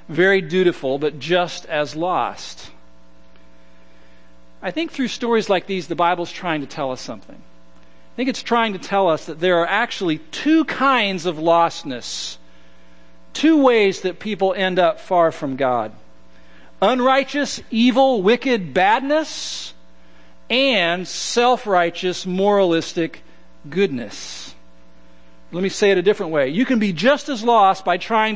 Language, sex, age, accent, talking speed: English, male, 50-69, American, 140 wpm